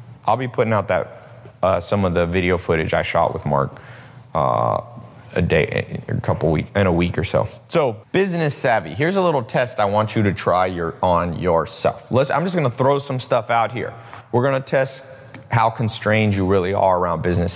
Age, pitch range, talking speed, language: 30-49, 95-130 Hz, 205 wpm, English